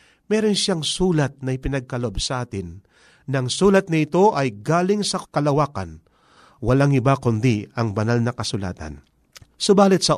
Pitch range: 115-165 Hz